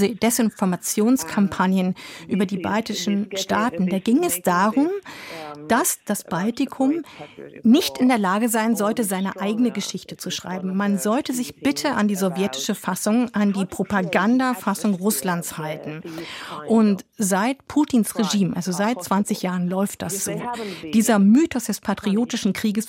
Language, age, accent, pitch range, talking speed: German, 50-69, German, 195-235 Hz, 135 wpm